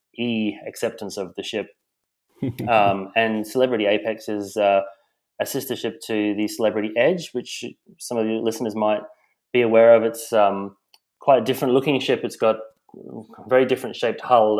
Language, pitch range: English, 100-120 Hz